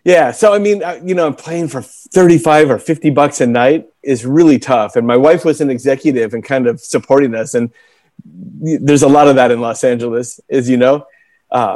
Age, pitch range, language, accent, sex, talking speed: 30-49, 130-165 Hz, English, American, male, 210 wpm